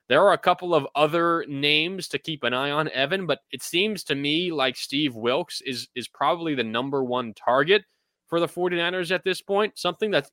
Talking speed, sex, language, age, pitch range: 210 wpm, male, English, 20-39, 120-155 Hz